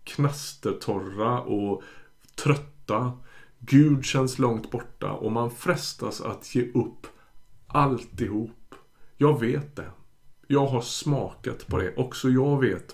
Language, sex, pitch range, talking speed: Swedish, male, 110-145 Hz, 125 wpm